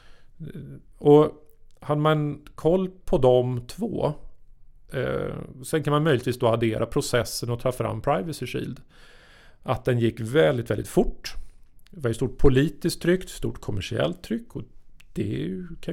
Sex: male